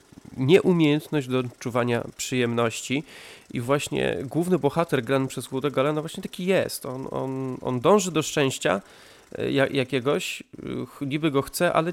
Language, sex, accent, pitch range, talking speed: Polish, male, native, 125-160 Hz, 130 wpm